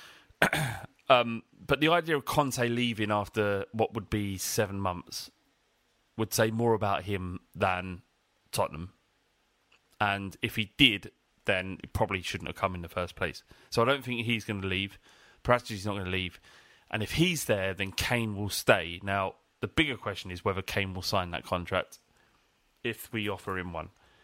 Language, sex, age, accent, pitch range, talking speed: English, male, 30-49, British, 100-120 Hz, 180 wpm